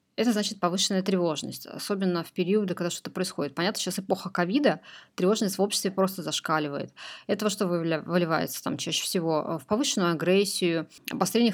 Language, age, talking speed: Russian, 20-39, 150 wpm